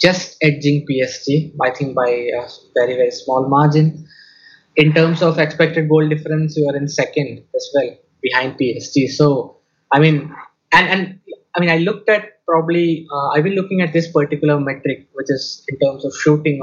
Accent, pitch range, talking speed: Indian, 140-165 Hz, 180 wpm